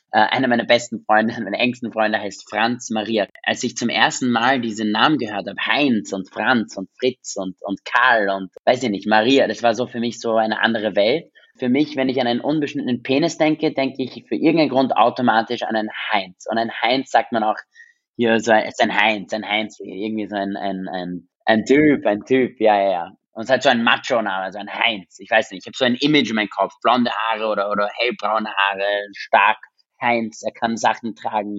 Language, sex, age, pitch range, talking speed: German, male, 20-39, 110-135 Hz, 225 wpm